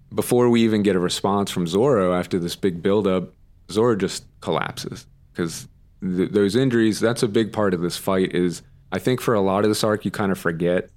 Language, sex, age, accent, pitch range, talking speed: English, male, 30-49, American, 90-105 Hz, 215 wpm